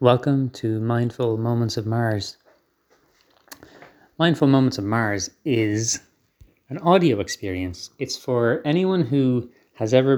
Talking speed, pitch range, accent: 120 wpm, 100-135 Hz, Irish